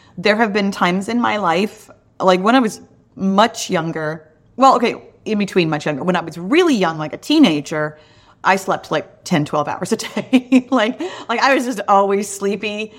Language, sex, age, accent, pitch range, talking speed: English, female, 30-49, American, 170-225 Hz, 195 wpm